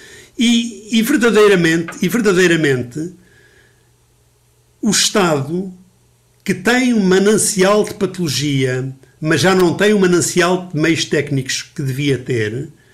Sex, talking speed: male, 105 wpm